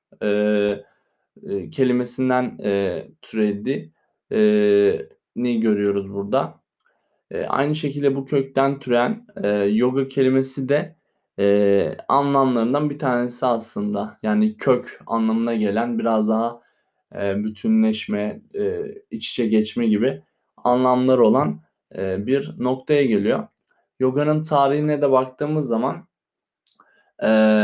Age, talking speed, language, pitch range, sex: 20-39, 105 wpm, Turkish, 115-135 Hz, male